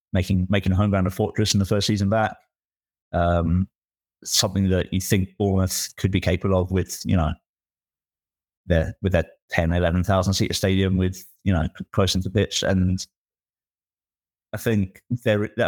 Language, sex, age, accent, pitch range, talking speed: English, male, 20-39, British, 85-100 Hz, 160 wpm